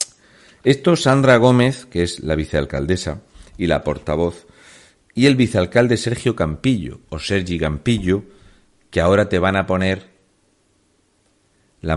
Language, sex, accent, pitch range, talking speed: Spanish, male, Spanish, 85-125 Hz, 125 wpm